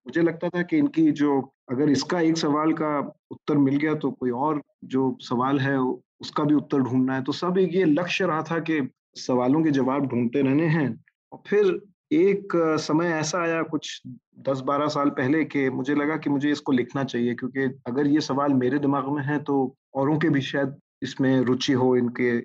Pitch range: 130-160 Hz